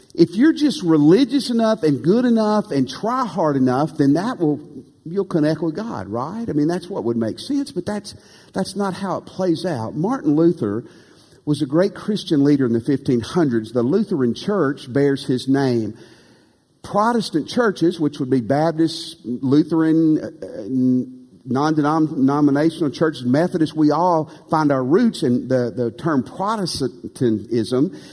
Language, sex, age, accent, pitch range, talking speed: English, male, 50-69, American, 135-205 Hz, 150 wpm